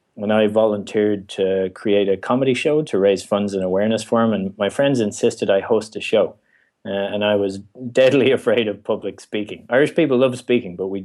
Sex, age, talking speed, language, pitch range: male, 30-49, 205 wpm, English, 95-110 Hz